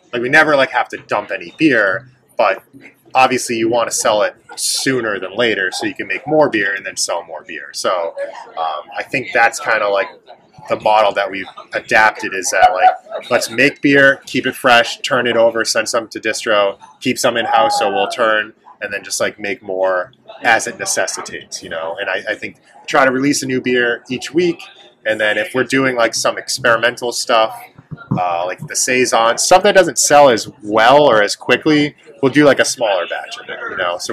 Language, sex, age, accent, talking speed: English, male, 20-39, American, 215 wpm